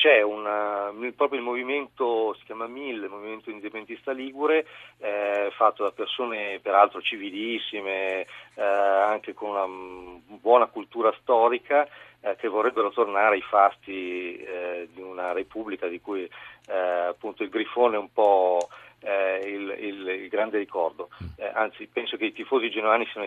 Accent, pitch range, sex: native, 95-130 Hz, male